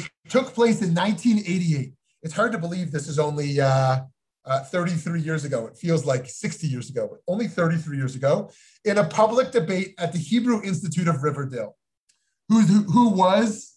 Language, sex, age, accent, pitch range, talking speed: English, male, 30-49, American, 155-205 Hz, 175 wpm